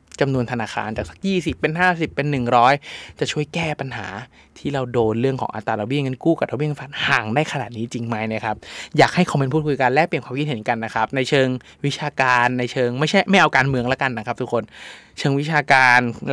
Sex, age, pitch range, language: male, 20-39, 125-155 Hz, Thai